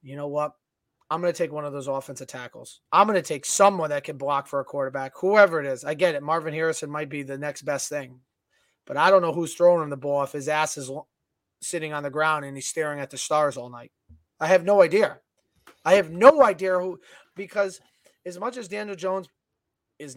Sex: male